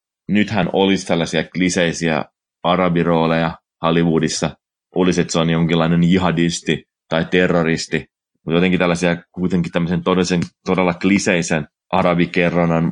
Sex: male